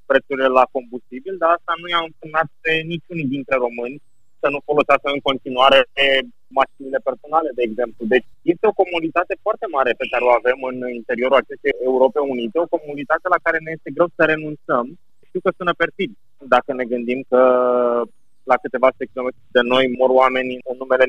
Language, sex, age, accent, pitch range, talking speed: Romanian, male, 30-49, native, 125-155 Hz, 175 wpm